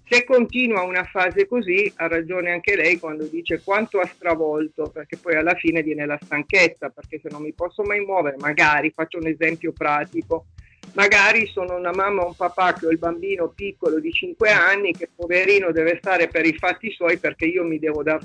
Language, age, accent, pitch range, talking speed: Italian, 50-69, native, 165-205 Hz, 200 wpm